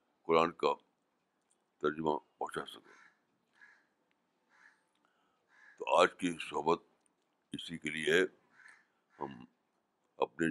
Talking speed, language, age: 80 wpm, Urdu, 60-79